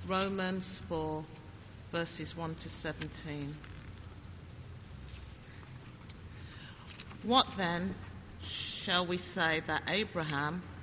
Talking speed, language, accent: 70 wpm, English, British